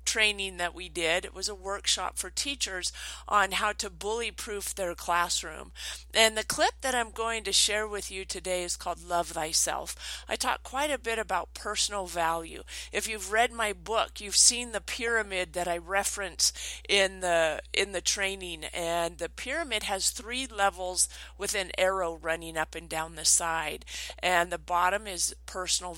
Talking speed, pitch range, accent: 175 wpm, 175-215 Hz, American